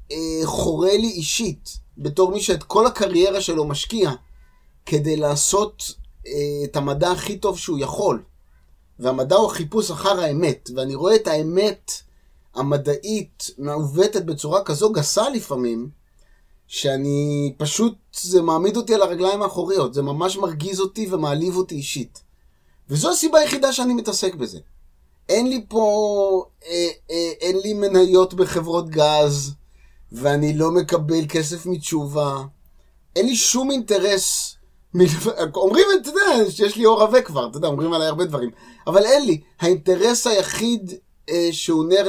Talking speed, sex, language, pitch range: 140 wpm, male, Hebrew, 145-210 Hz